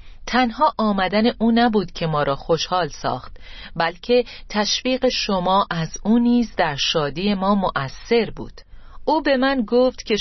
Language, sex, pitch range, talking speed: Persian, female, 165-220 Hz, 145 wpm